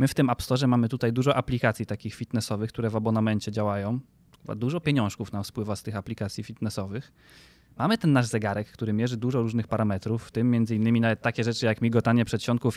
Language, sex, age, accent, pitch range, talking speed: Polish, male, 20-39, native, 115-180 Hz, 195 wpm